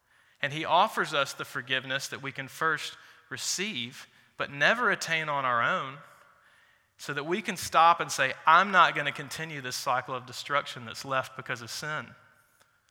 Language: English